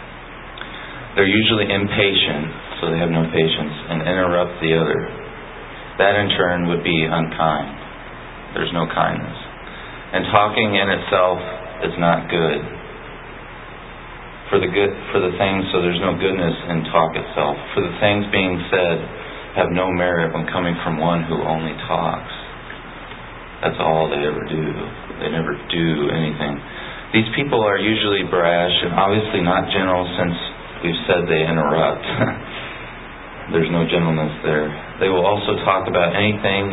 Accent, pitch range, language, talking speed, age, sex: American, 80-95 Hz, English, 145 wpm, 30-49, male